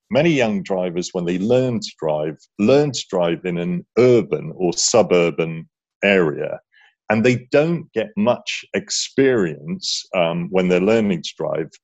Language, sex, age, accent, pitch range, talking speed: English, male, 40-59, British, 95-130 Hz, 145 wpm